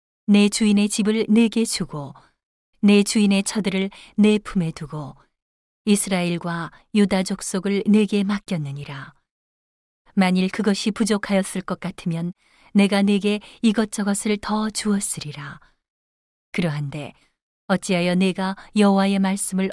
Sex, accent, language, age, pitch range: female, native, Korean, 40-59, 175-210 Hz